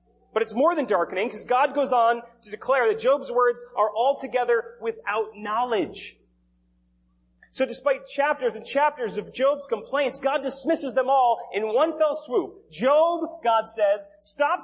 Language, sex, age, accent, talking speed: English, male, 30-49, American, 155 wpm